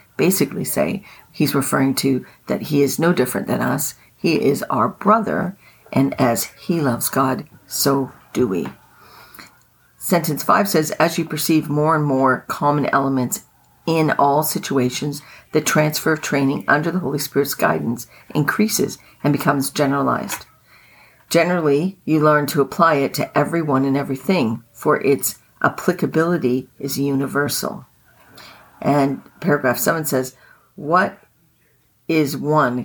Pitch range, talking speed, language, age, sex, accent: 135-160 Hz, 135 wpm, English, 50-69, female, American